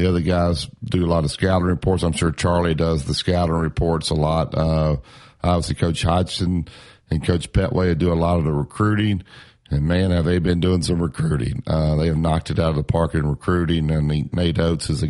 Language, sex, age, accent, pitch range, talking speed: English, male, 50-69, American, 80-95 Hz, 220 wpm